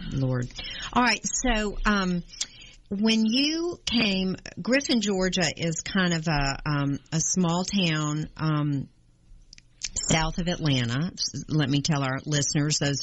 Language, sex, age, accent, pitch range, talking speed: English, female, 50-69, American, 145-190 Hz, 130 wpm